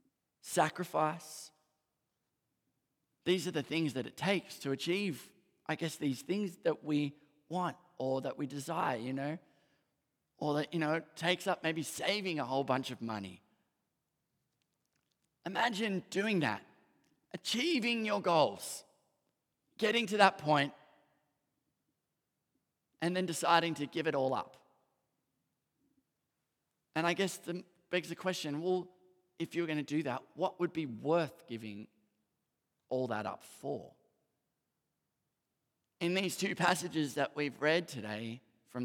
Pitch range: 140-180 Hz